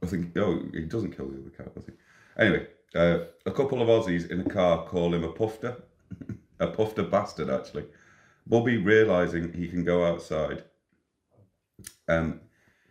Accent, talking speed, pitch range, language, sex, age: British, 165 wpm, 85-120 Hz, English, male, 30-49